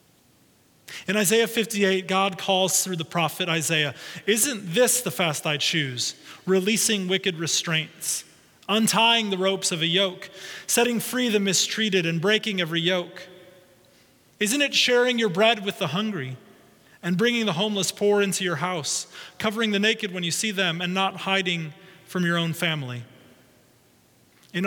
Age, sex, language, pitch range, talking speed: 30-49, male, English, 165-205 Hz, 155 wpm